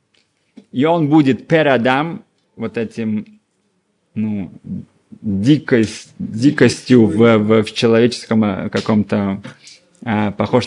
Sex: male